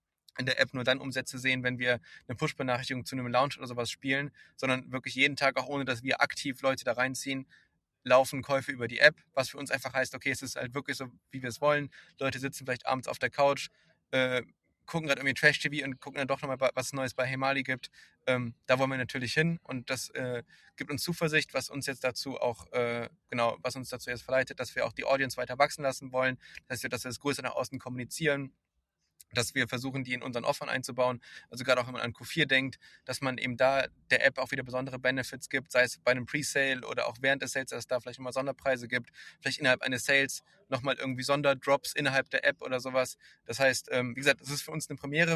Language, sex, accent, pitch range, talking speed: German, male, German, 125-140 Hz, 240 wpm